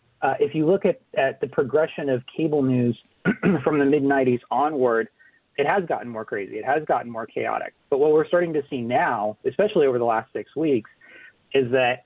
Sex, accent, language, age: male, American, English, 30-49